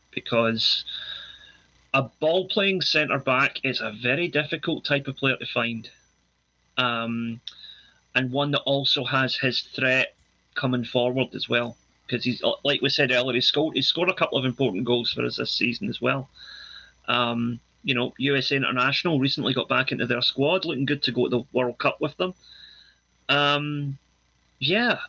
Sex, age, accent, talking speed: male, 30-49, British, 165 wpm